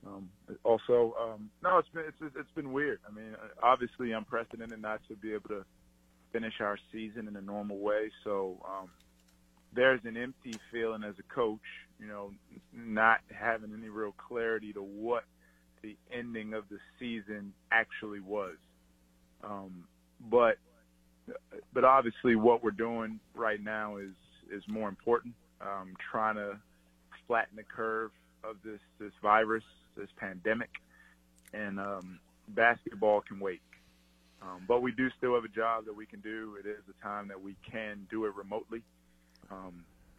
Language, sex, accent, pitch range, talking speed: English, male, American, 95-115 Hz, 155 wpm